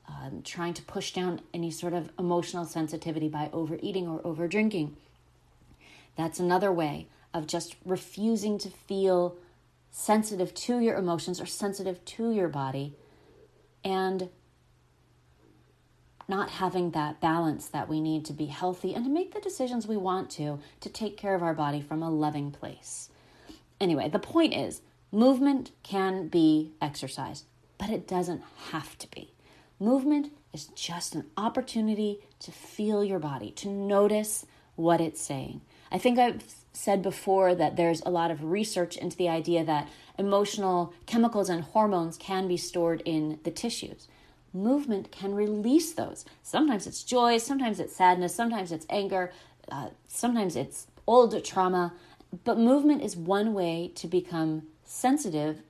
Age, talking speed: 30-49, 150 wpm